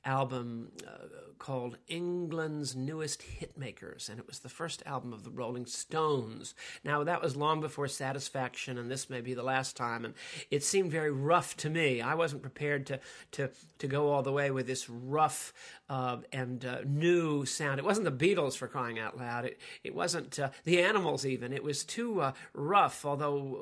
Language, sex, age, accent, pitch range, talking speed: English, male, 50-69, American, 130-155 Hz, 190 wpm